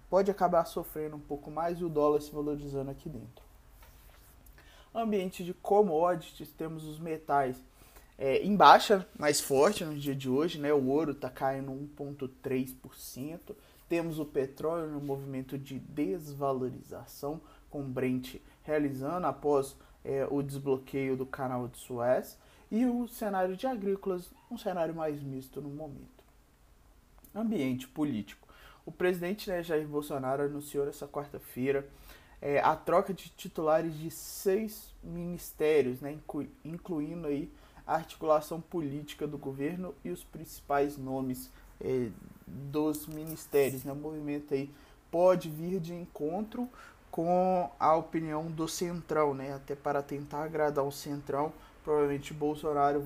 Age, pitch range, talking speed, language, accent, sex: 20-39, 135-165 Hz, 130 wpm, Portuguese, Brazilian, male